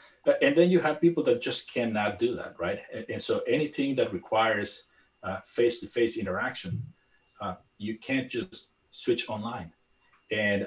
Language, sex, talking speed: English, male, 150 wpm